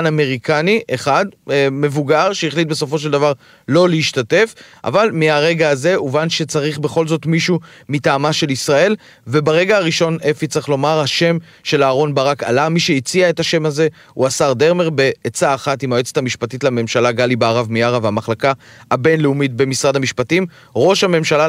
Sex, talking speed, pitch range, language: male, 150 wpm, 135-165 Hz, Hebrew